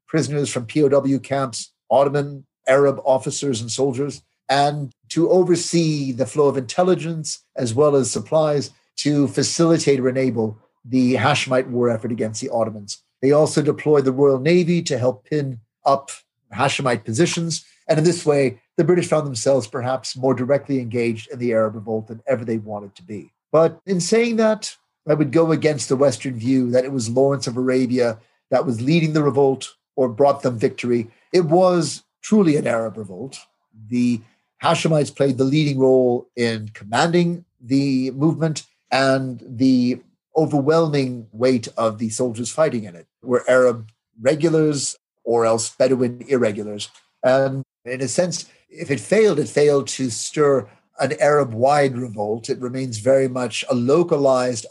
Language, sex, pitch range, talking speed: English, male, 120-150 Hz, 160 wpm